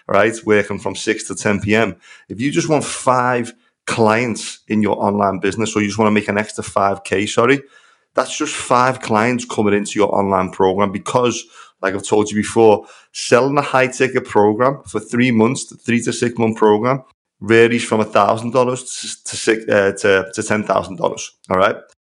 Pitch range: 100-120 Hz